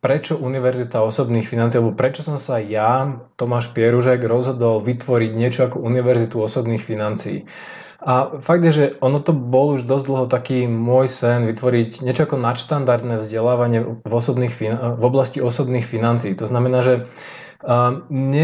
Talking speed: 150 wpm